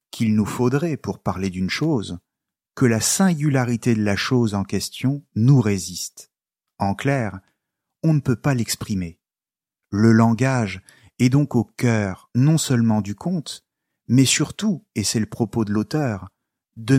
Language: French